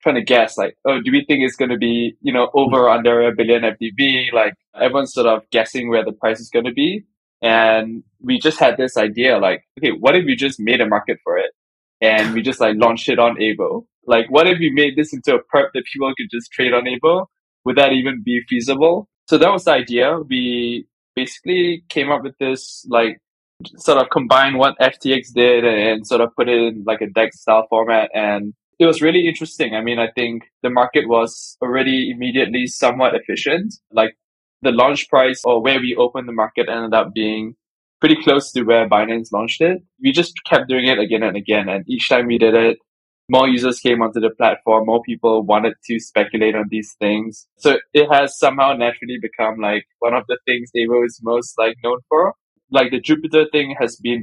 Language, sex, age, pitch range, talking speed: English, male, 10-29, 115-135 Hz, 215 wpm